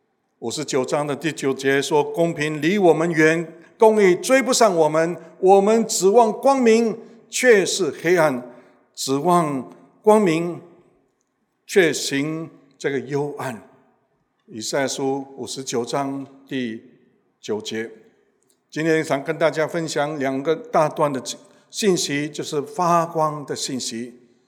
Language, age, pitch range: English, 60-79, 140-190 Hz